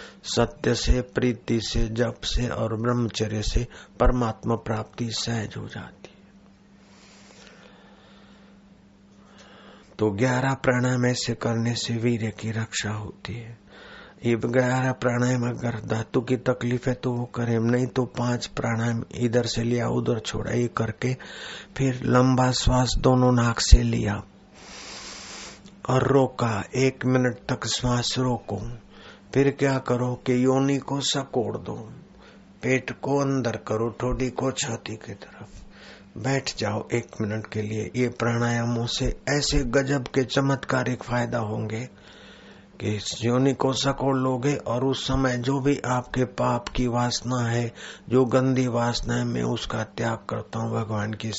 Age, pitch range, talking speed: 50-69, 110-130 Hz, 140 wpm